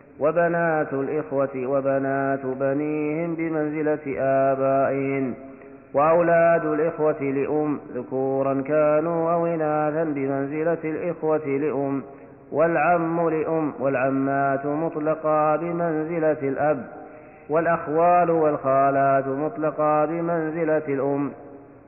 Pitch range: 140-170 Hz